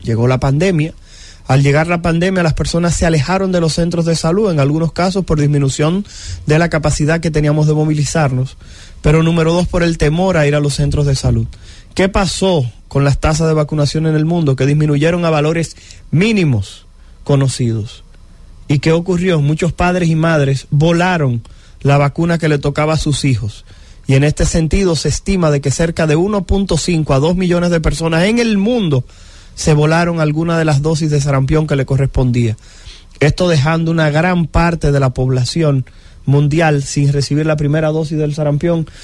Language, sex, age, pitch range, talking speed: English, male, 30-49, 135-165 Hz, 185 wpm